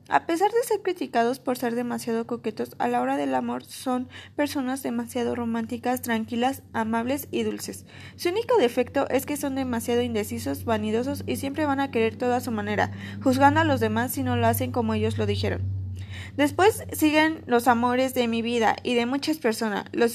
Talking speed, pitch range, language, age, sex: 190 wpm, 230-285 Hz, Spanish, 20-39, female